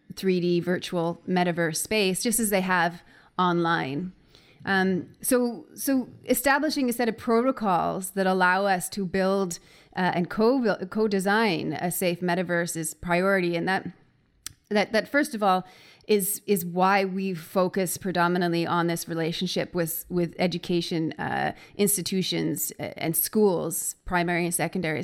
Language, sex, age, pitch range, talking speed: English, female, 30-49, 170-195 Hz, 140 wpm